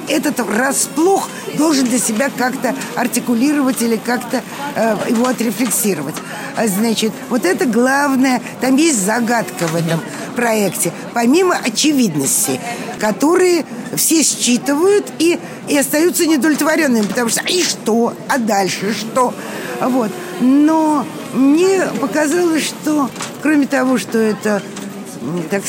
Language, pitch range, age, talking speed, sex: Russian, 205-275 Hz, 50-69, 110 wpm, female